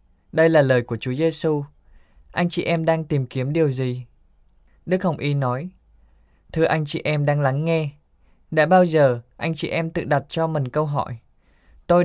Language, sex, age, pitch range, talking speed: Vietnamese, male, 20-39, 130-165 Hz, 190 wpm